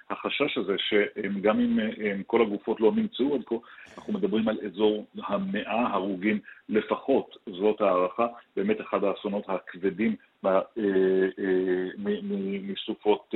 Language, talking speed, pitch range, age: Hebrew, 110 wpm, 95-115 Hz, 50-69